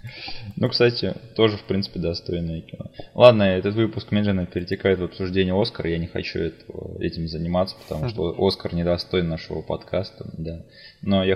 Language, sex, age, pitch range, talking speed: Russian, male, 20-39, 90-105 Hz, 160 wpm